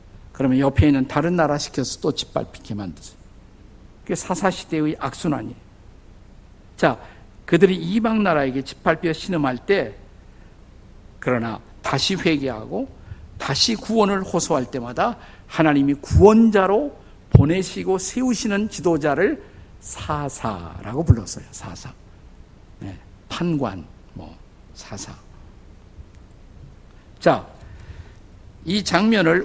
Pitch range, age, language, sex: 120-190 Hz, 50-69, Korean, male